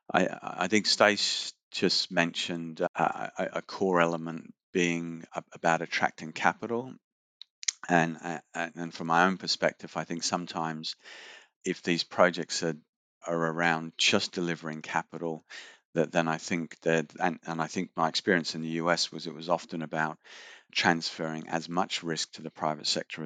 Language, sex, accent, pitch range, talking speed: English, male, British, 80-85 Hz, 150 wpm